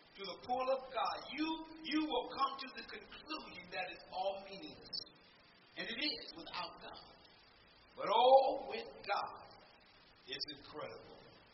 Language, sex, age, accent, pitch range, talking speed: English, male, 50-69, American, 205-295 Hz, 140 wpm